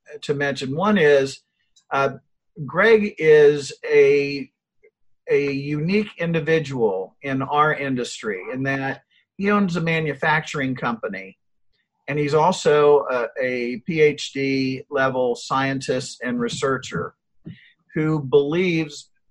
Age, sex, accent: 50-69, male, American